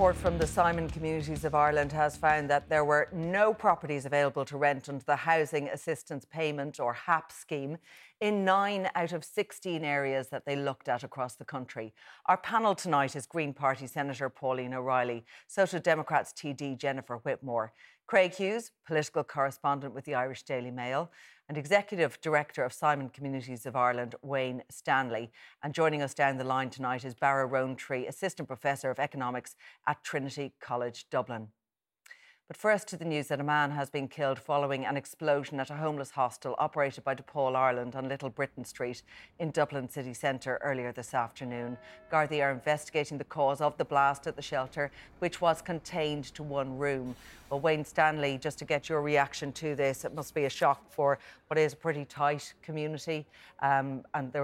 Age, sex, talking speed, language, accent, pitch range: 40-59, female, 180 wpm, English, Irish, 135-155 Hz